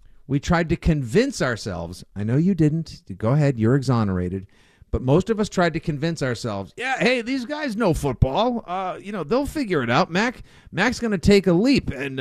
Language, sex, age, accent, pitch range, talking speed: English, male, 50-69, American, 115-170 Hz, 205 wpm